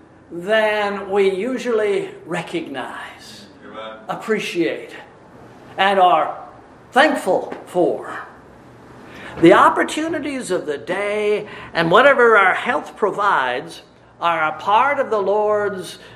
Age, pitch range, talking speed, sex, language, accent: 50-69, 155-215 Hz, 95 wpm, male, English, American